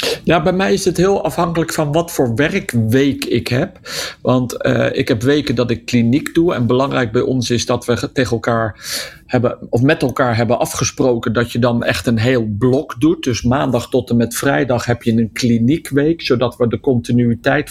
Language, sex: Dutch, male